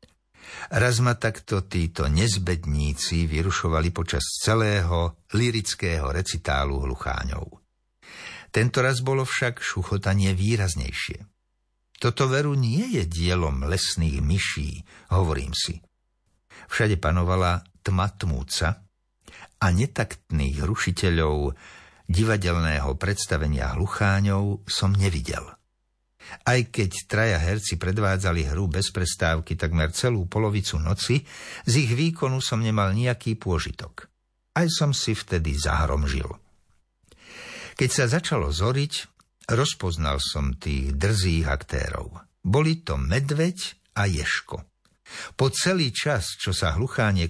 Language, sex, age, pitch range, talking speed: Slovak, male, 60-79, 80-110 Hz, 105 wpm